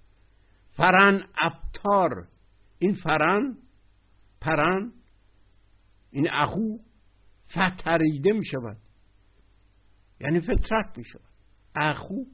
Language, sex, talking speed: Persian, male, 80 wpm